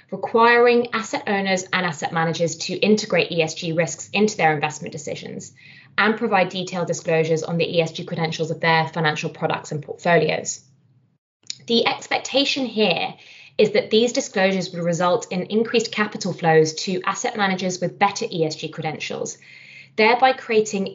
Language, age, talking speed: English, 20-39, 145 wpm